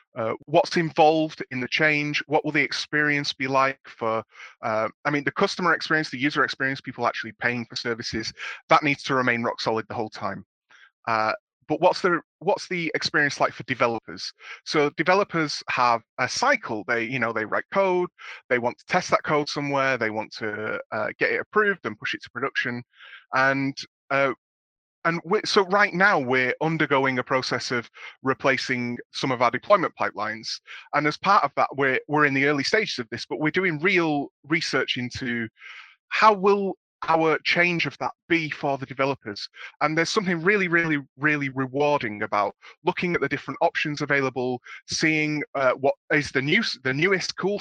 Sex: male